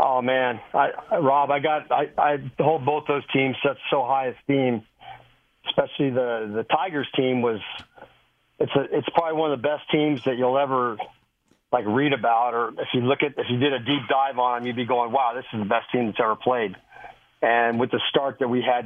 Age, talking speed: 40-59, 225 wpm